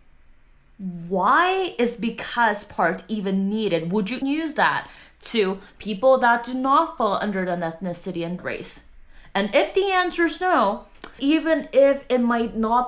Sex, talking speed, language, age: female, 150 wpm, English, 20-39